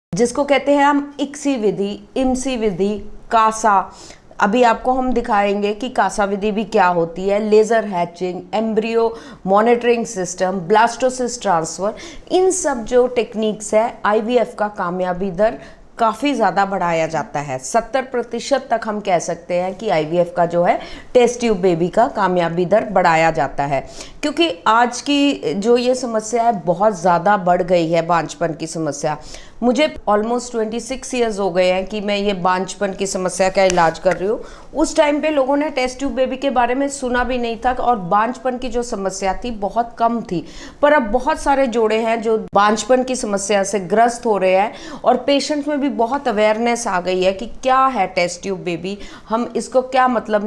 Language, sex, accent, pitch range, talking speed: Hindi, female, native, 185-245 Hz, 180 wpm